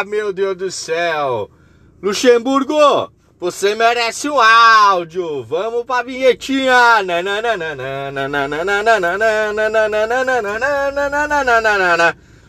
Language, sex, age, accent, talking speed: Portuguese, male, 30-49, Brazilian, 100 wpm